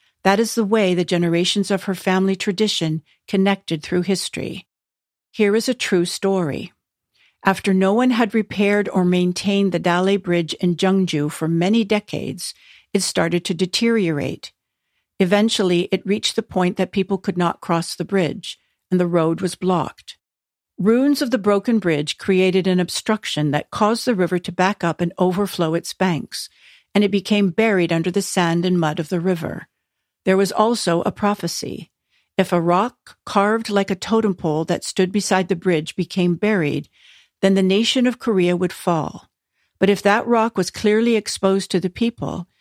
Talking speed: 170 wpm